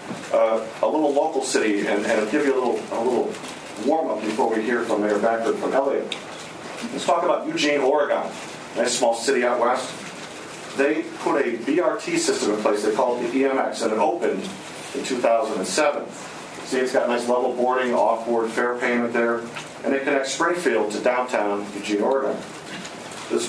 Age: 40-59